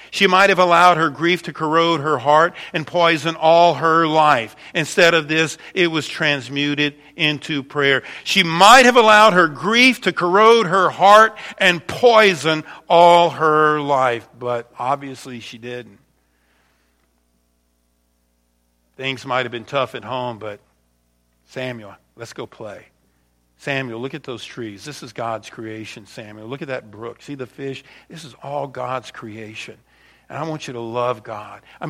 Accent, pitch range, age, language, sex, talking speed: American, 115-160 Hz, 50-69, English, male, 160 wpm